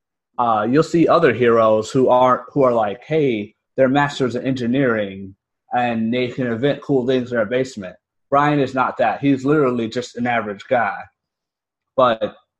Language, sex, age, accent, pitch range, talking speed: English, male, 30-49, American, 115-145 Hz, 165 wpm